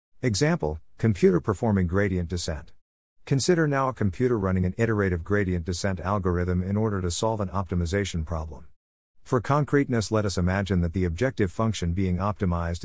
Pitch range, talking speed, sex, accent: 90-115 Hz, 155 wpm, male, American